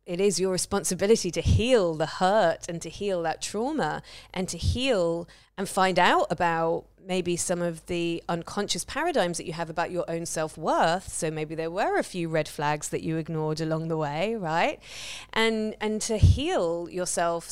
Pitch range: 170-220 Hz